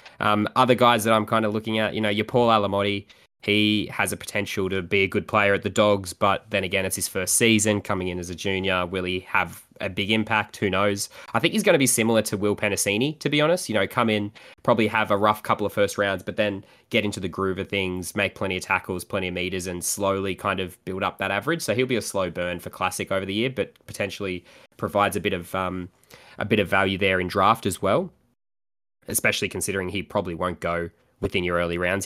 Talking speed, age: 245 wpm, 10-29